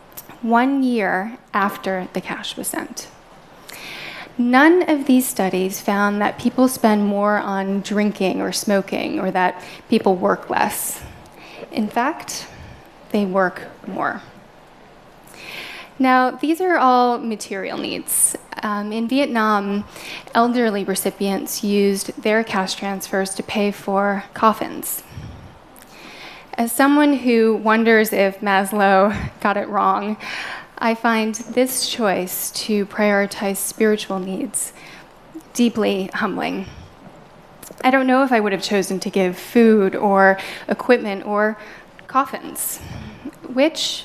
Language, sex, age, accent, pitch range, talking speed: Russian, female, 10-29, American, 195-245 Hz, 115 wpm